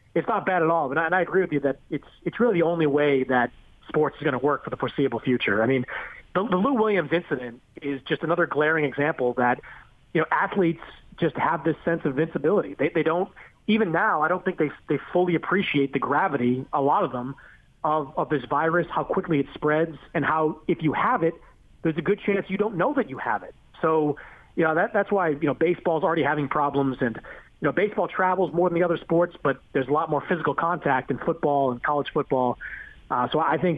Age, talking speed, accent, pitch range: 30-49, 235 wpm, American, 140-165 Hz